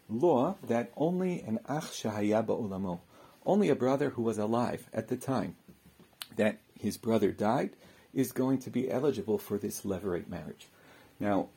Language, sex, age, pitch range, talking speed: English, male, 50-69, 110-135 Hz, 150 wpm